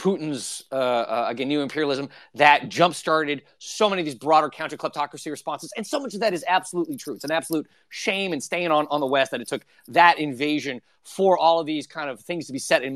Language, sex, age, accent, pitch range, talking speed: English, male, 30-49, American, 145-190 Hz, 225 wpm